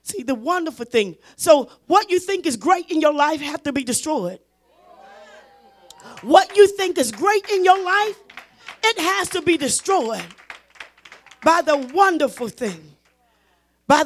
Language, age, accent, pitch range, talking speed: English, 40-59, American, 235-320 Hz, 150 wpm